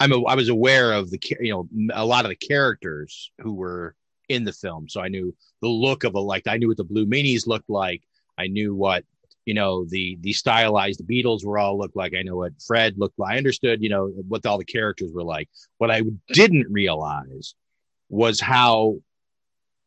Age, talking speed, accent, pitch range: 30-49, 210 wpm, American, 105-135 Hz